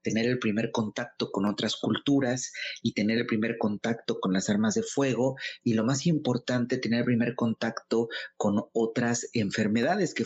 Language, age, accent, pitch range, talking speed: Spanish, 40-59, Mexican, 115-155 Hz, 170 wpm